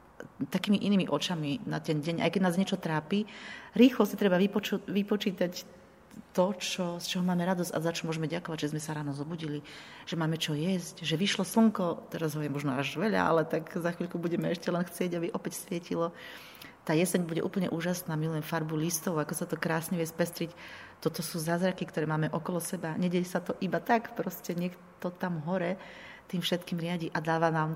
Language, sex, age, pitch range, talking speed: Slovak, female, 30-49, 160-190 Hz, 200 wpm